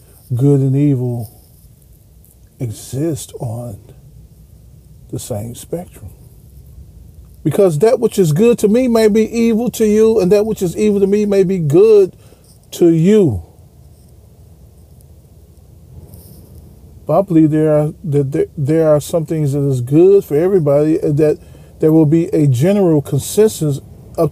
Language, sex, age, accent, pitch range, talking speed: English, male, 40-59, American, 110-175 Hz, 135 wpm